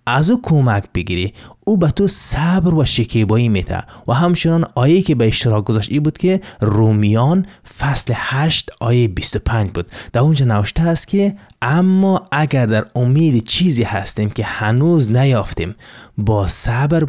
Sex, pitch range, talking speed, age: male, 110-140 Hz, 150 wpm, 30-49